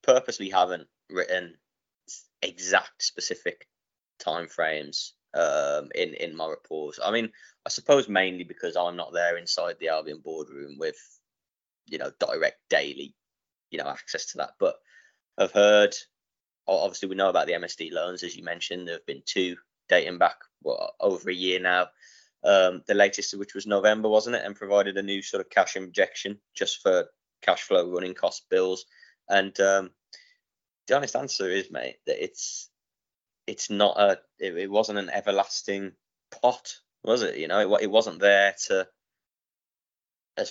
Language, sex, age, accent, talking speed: English, male, 20-39, British, 165 wpm